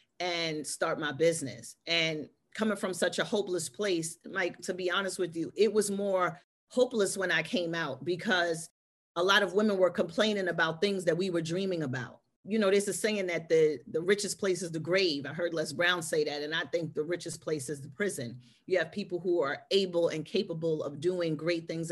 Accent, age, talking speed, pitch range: American, 40-59, 215 wpm, 165-200 Hz